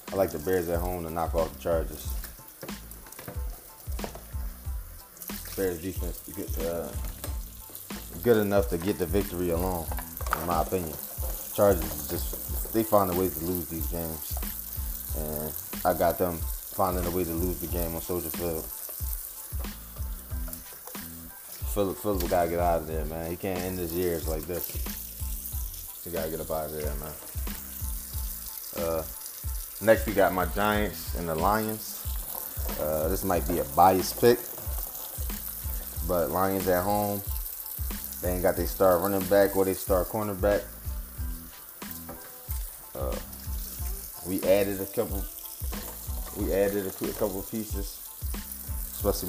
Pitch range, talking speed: 80-95 Hz, 140 wpm